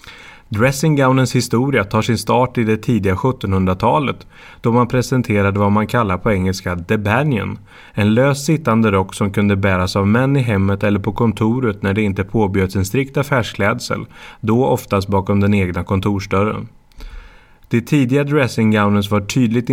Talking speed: 155 wpm